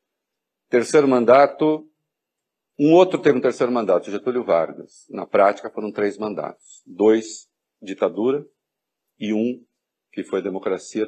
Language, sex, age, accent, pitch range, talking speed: Portuguese, male, 50-69, Brazilian, 105-135 Hz, 125 wpm